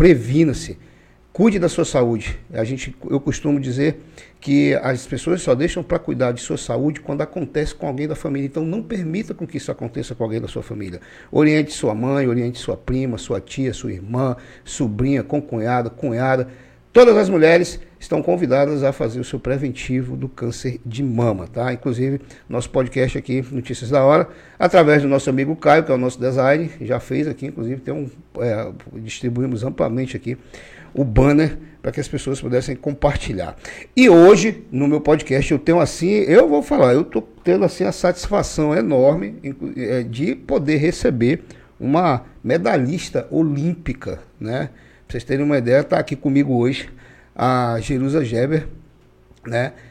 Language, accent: Portuguese, Brazilian